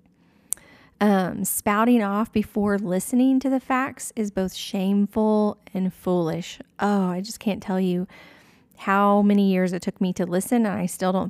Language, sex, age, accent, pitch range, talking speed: English, female, 30-49, American, 185-215 Hz, 165 wpm